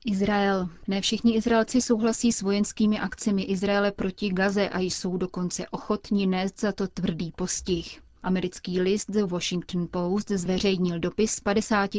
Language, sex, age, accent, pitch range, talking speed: Czech, female, 30-49, native, 180-205 Hz, 140 wpm